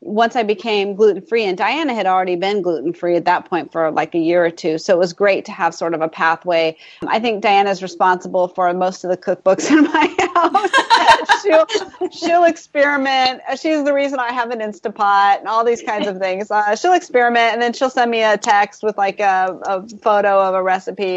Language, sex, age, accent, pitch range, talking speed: English, female, 30-49, American, 185-245 Hz, 215 wpm